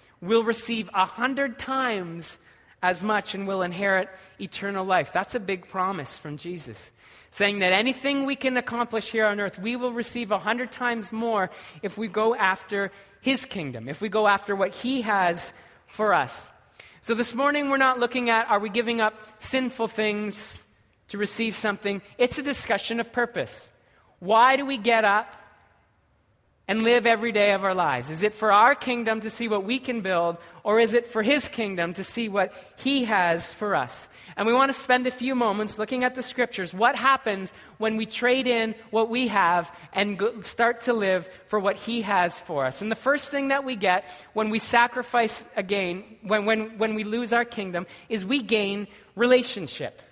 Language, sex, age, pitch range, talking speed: English, male, 30-49, 185-235 Hz, 190 wpm